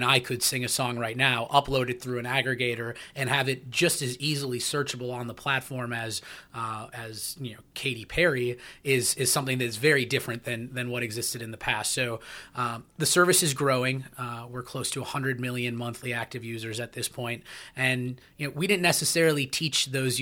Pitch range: 120-140 Hz